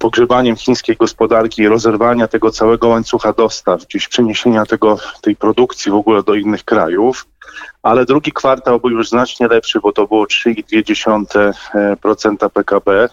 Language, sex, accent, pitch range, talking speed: Polish, male, native, 105-120 Hz, 135 wpm